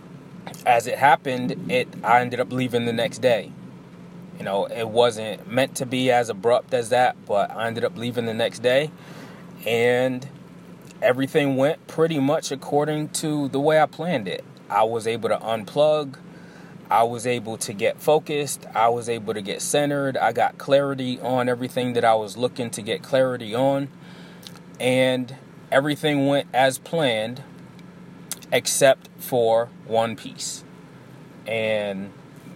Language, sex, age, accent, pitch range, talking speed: English, male, 20-39, American, 115-140 Hz, 150 wpm